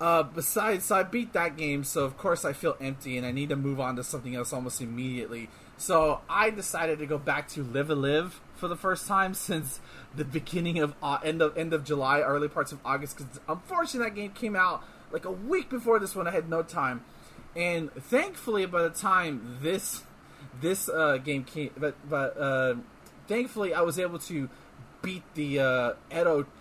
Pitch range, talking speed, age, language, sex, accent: 140-195 Hz, 205 wpm, 20-39, English, male, American